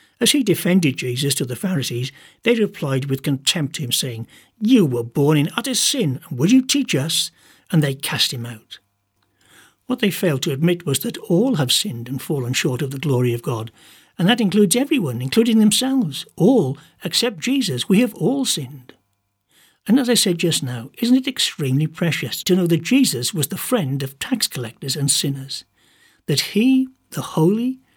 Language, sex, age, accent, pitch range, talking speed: English, male, 60-79, British, 135-205 Hz, 185 wpm